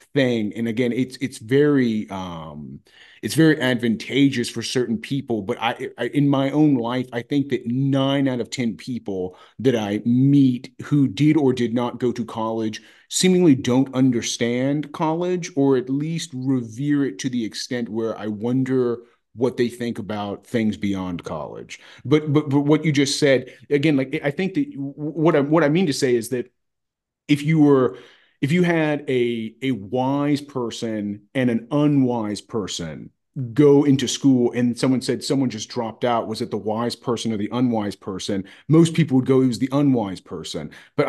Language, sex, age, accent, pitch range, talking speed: English, male, 30-49, American, 115-140 Hz, 185 wpm